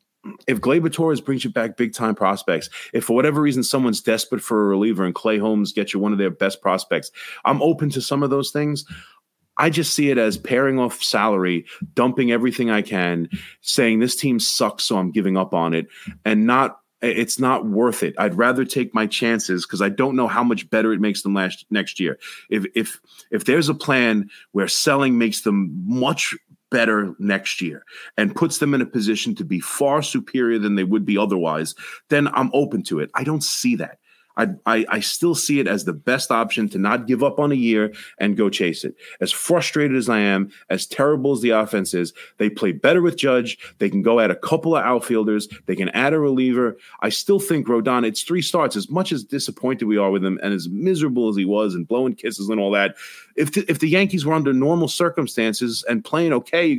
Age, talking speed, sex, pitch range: 30-49, 220 wpm, male, 105-150 Hz